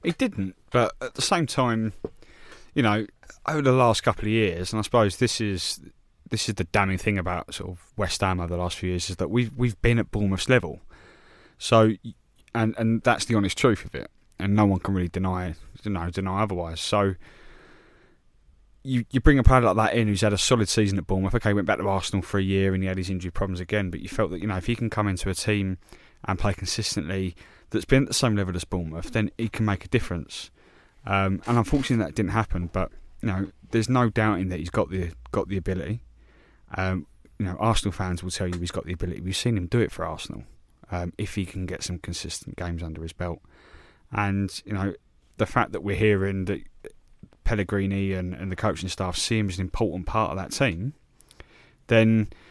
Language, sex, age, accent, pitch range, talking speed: English, male, 20-39, British, 90-110 Hz, 225 wpm